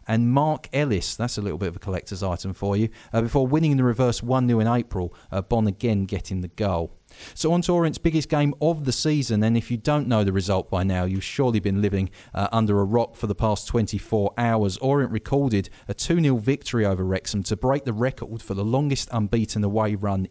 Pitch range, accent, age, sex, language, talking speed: 100-130 Hz, British, 40-59, male, English, 225 wpm